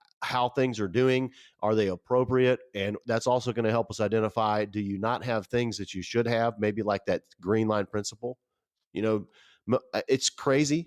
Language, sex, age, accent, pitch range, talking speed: English, male, 40-59, American, 100-125 Hz, 180 wpm